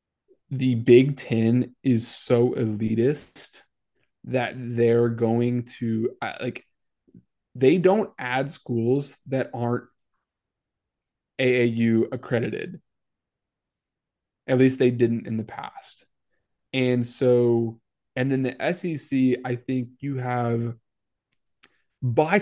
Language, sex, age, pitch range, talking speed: English, male, 20-39, 115-135 Hz, 100 wpm